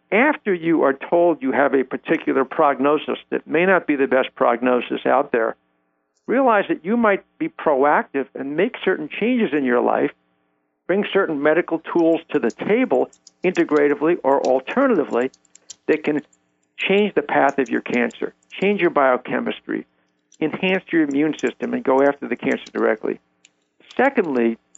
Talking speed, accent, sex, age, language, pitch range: 155 wpm, American, male, 60-79, English, 115-165 Hz